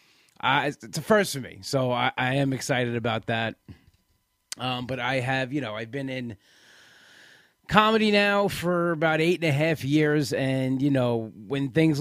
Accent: American